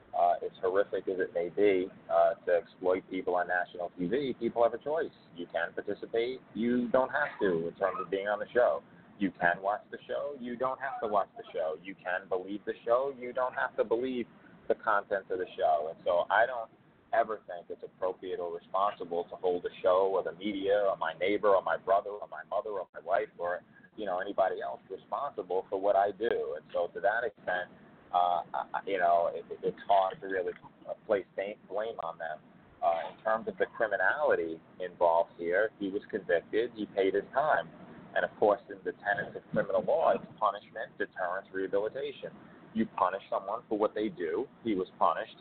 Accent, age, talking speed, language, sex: American, 30-49, 205 wpm, English, male